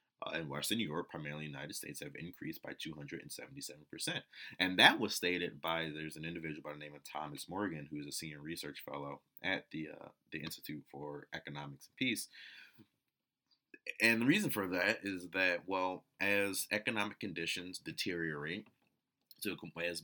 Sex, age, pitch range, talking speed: male, 30-49, 75-85 Hz, 175 wpm